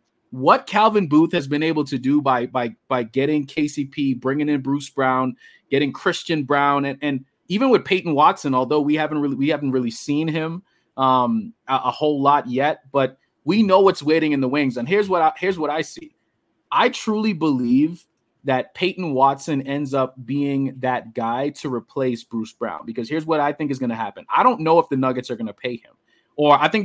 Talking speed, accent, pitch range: 210 wpm, American, 135-165 Hz